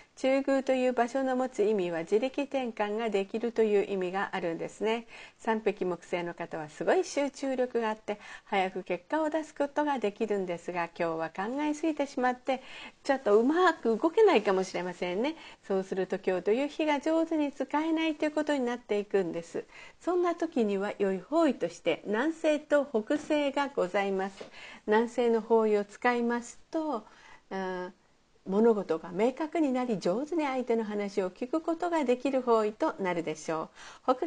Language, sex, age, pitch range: Japanese, female, 50-69, 195-295 Hz